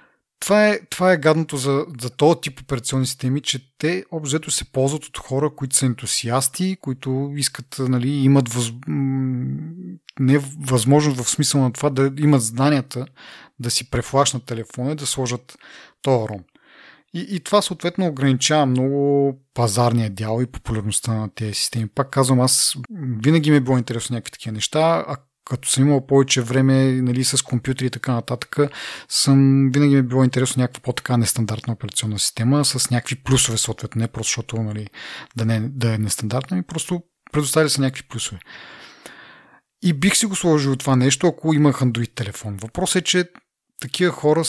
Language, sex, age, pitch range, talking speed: Bulgarian, male, 30-49, 120-145 Hz, 165 wpm